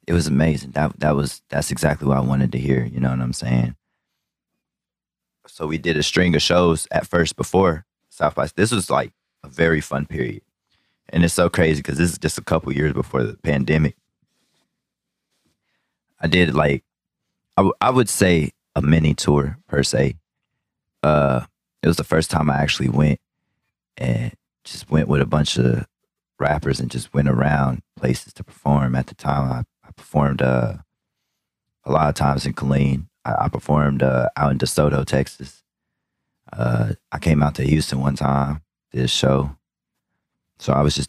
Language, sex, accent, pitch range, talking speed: English, male, American, 65-80 Hz, 185 wpm